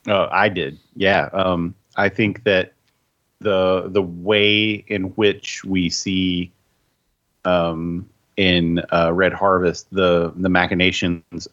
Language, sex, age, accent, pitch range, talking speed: English, male, 30-49, American, 85-95 Hz, 120 wpm